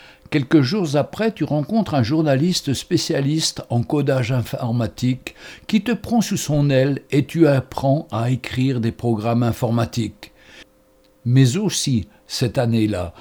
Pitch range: 120-160 Hz